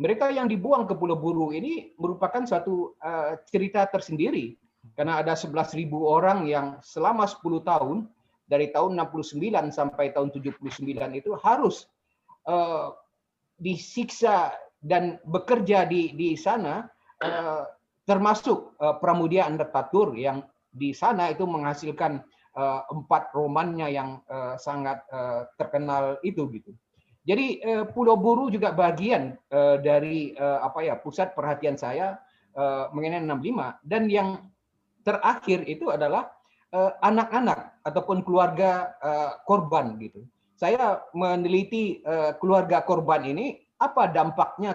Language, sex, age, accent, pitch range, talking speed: Indonesian, male, 30-49, native, 145-190 Hz, 115 wpm